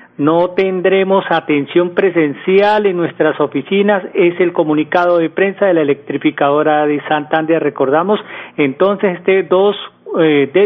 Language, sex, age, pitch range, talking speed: Spanish, male, 40-59, 155-195 Hz, 125 wpm